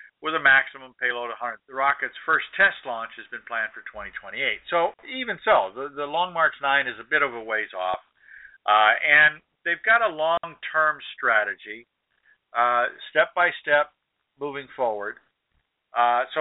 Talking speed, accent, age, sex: 160 wpm, American, 50-69, male